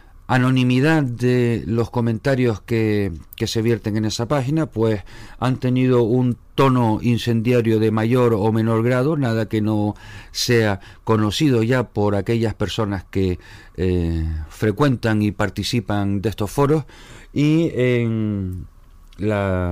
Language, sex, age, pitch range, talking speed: Spanish, male, 40-59, 95-130 Hz, 130 wpm